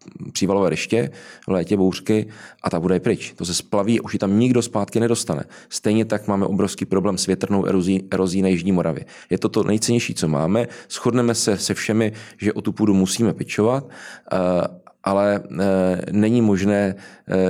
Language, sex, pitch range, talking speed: Czech, male, 95-110 Hz, 175 wpm